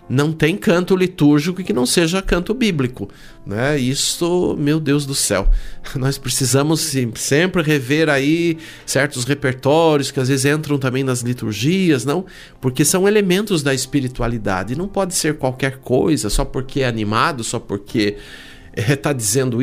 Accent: Brazilian